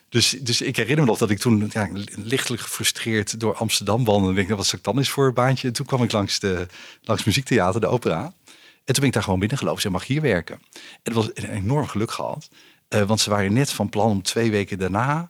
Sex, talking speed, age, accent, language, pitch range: male, 265 wpm, 50-69, Dutch, Dutch, 90-110 Hz